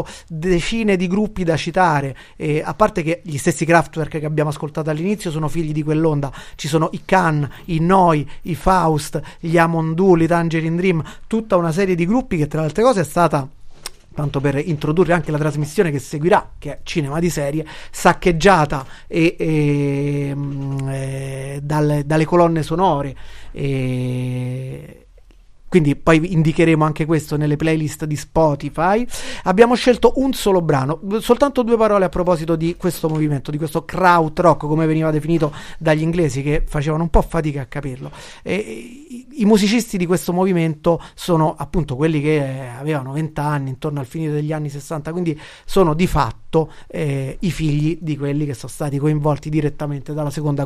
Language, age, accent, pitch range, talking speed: Italian, 30-49, native, 150-175 Hz, 165 wpm